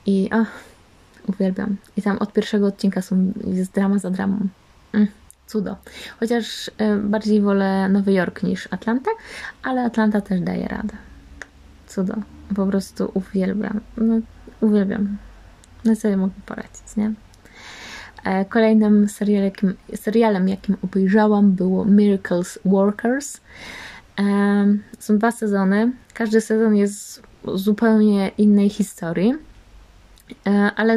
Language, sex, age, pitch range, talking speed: Polish, female, 20-39, 195-220 Hz, 120 wpm